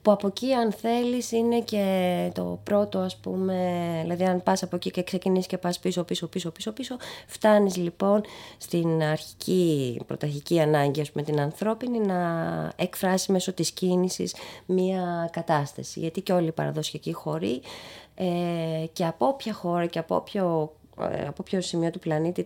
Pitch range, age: 155-205 Hz, 20-39